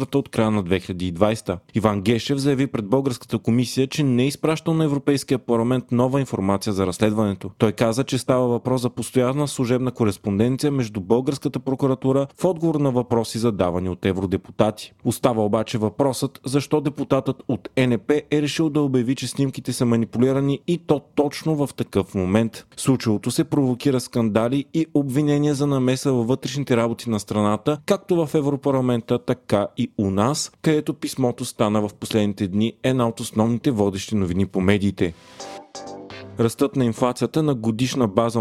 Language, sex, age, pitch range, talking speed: Bulgarian, male, 30-49, 105-140 Hz, 155 wpm